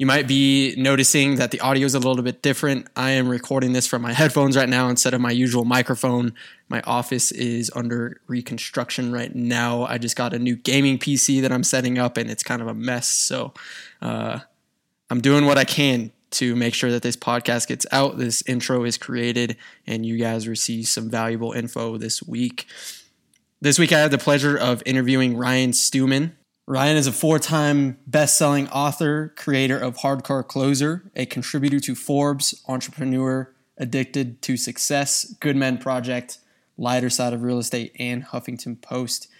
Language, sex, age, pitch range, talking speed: English, male, 20-39, 120-140 Hz, 180 wpm